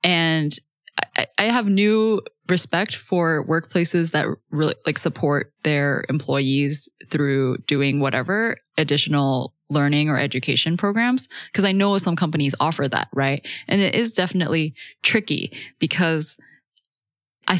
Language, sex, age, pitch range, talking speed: English, female, 10-29, 140-175 Hz, 125 wpm